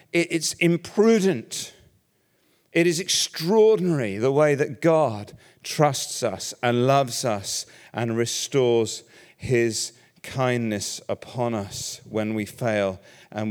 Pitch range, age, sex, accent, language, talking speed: 100-125 Hz, 40-59, male, British, English, 105 wpm